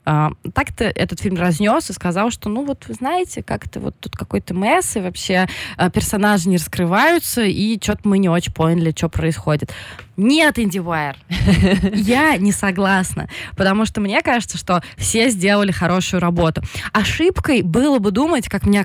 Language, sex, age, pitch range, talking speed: Russian, female, 20-39, 175-235 Hz, 160 wpm